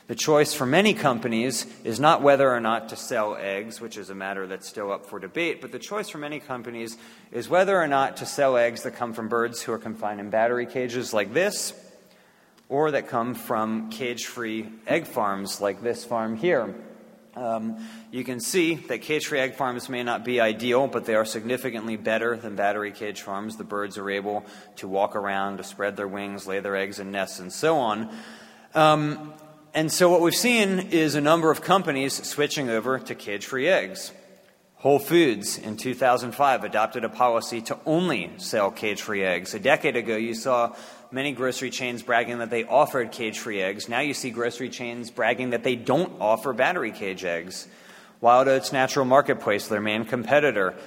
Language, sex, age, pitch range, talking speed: English, male, 30-49, 110-135 Hz, 190 wpm